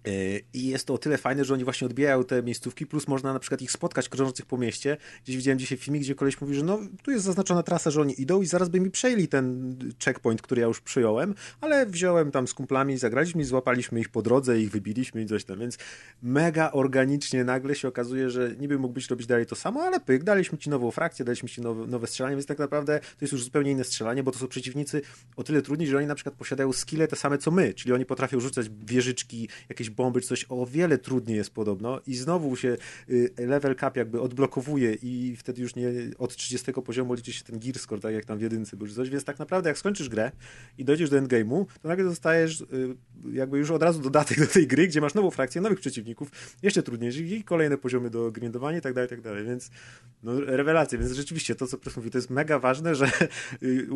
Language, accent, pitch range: Polish, native, 125-150 Hz